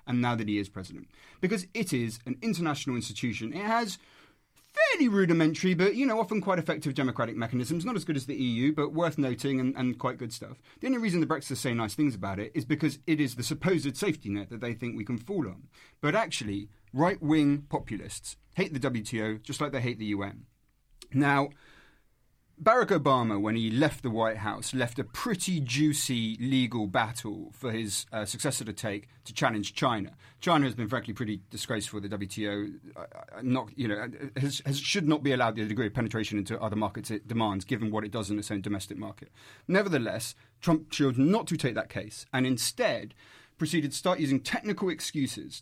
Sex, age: male, 30-49